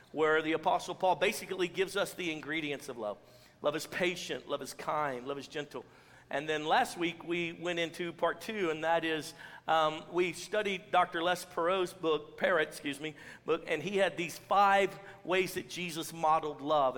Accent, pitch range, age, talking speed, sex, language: American, 155-185 Hz, 50-69, 185 wpm, male, English